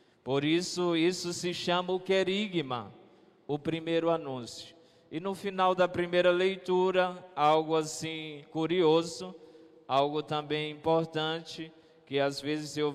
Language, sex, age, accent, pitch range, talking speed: Portuguese, male, 20-39, Brazilian, 140-170 Hz, 120 wpm